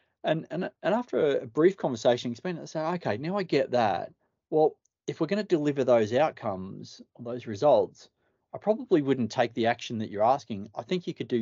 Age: 30-49